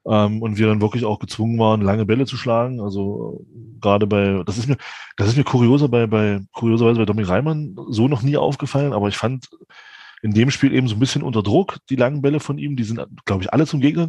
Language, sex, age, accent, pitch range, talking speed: German, male, 20-39, German, 105-140 Hz, 220 wpm